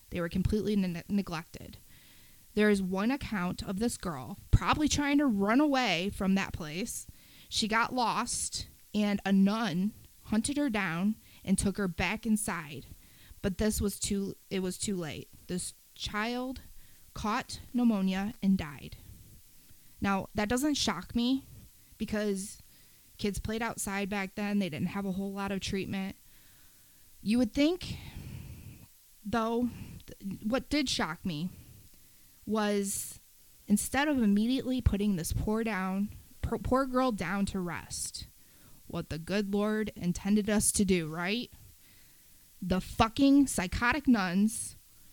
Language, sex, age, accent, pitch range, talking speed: English, female, 20-39, American, 190-230 Hz, 135 wpm